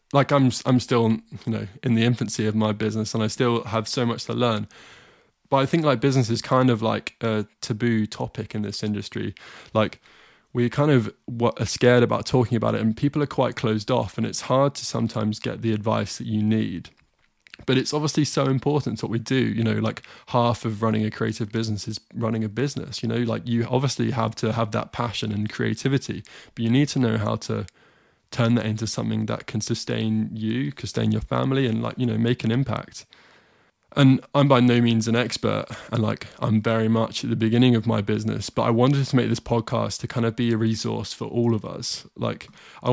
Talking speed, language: 220 wpm, English